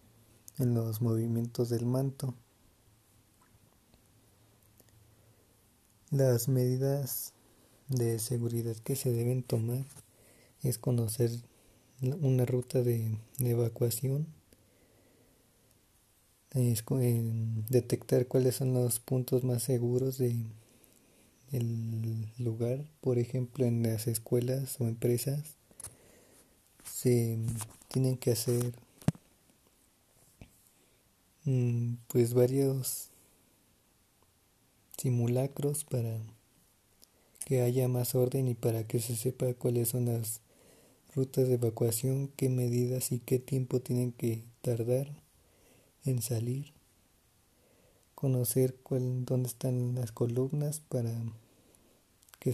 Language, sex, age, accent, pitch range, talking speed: Spanish, male, 30-49, Mexican, 115-130 Hz, 90 wpm